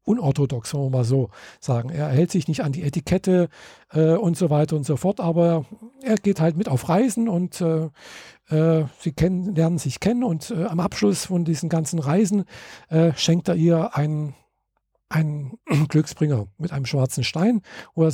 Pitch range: 150-185 Hz